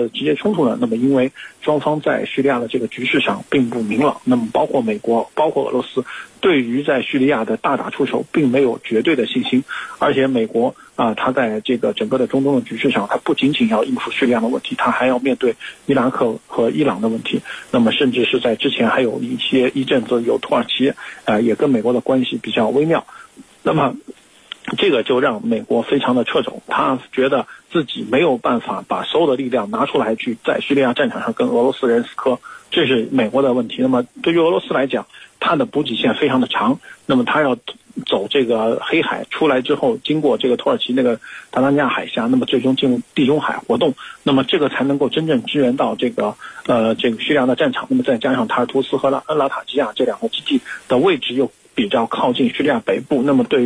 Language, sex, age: Chinese, male, 50-69